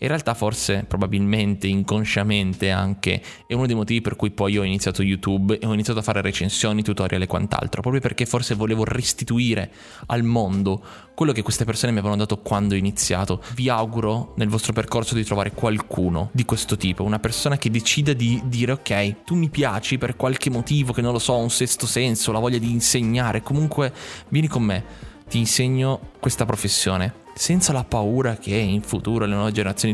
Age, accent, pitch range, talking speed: 20-39, native, 105-125 Hz, 190 wpm